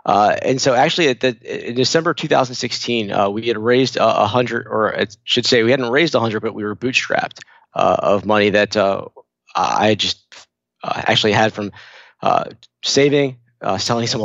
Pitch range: 110-130 Hz